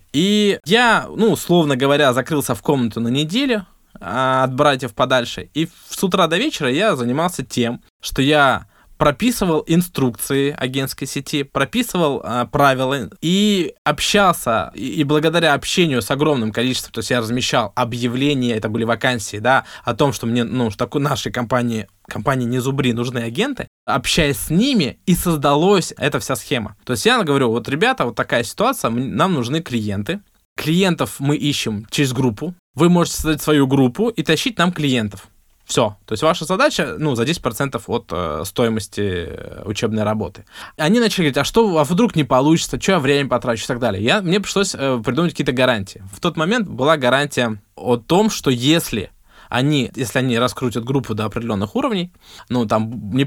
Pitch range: 120-160 Hz